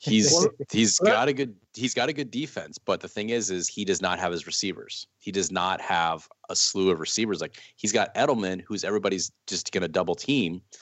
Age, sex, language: 30-49, male, English